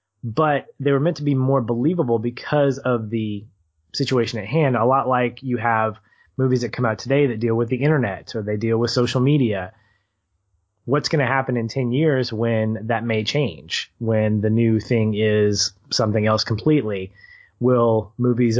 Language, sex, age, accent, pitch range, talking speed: English, male, 20-39, American, 105-135 Hz, 180 wpm